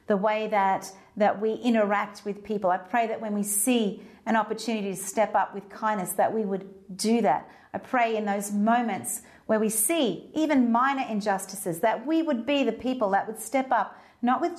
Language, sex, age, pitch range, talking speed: English, female, 40-59, 185-230 Hz, 200 wpm